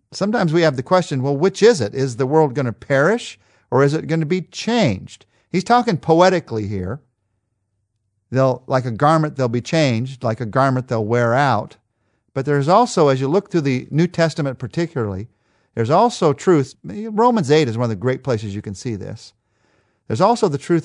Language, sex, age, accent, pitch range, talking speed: English, male, 50-69, American, 120-160 Hz, 200 wpm